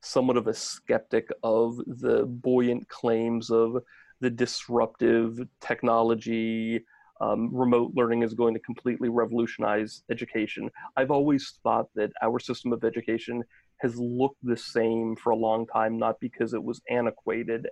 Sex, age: male, 30-49